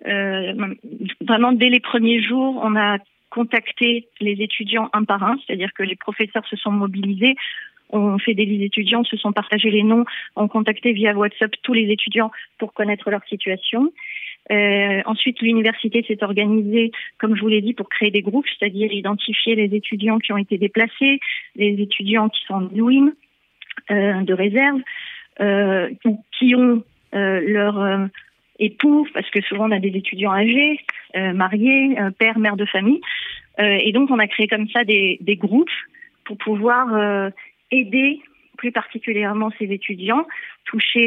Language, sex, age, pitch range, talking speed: French, female, 40-59, 205-240 Hz, 165 wpm